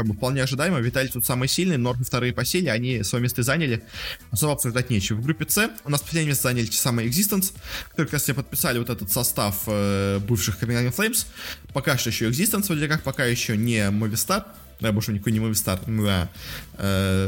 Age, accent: 20-39, native